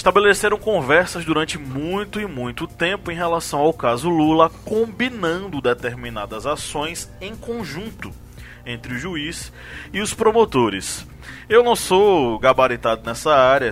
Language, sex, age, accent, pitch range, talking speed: Portuguese, male, 20-39, Brazilian, 120-180 Hz, 125 wpm